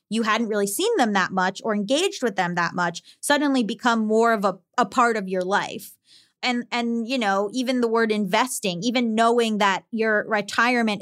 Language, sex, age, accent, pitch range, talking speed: English, female, 20-39, American, 205-265 Hz, 195 wpm